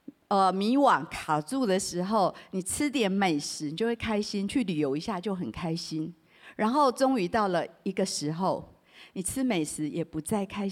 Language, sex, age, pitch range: Chinese, female, 50-69, 175-245 Hz